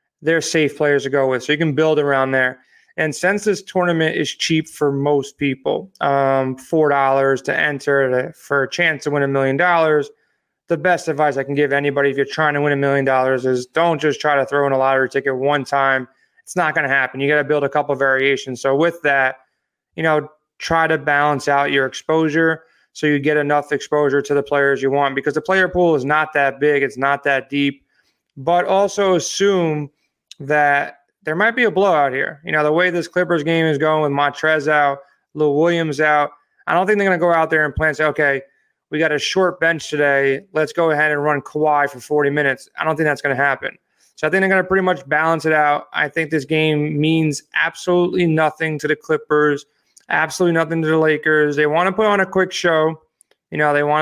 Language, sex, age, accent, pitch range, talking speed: English, male, 20-39, American, 140-165 Hz, 225 wpm